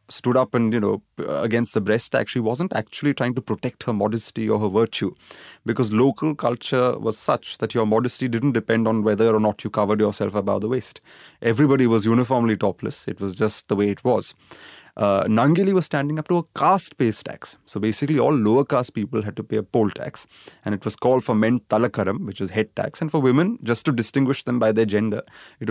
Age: 30-49